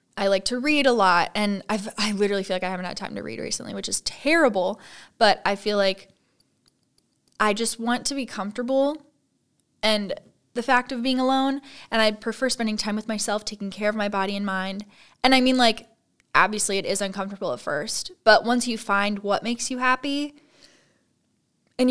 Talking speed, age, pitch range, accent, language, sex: 195 wpm, 10-29, 195-240 Hz, American, English, female